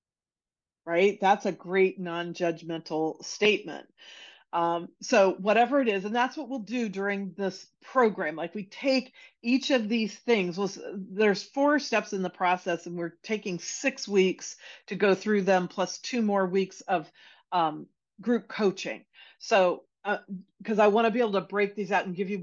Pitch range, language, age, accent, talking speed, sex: 180-235 Hz, English, 40-59, American, 175 wpm, female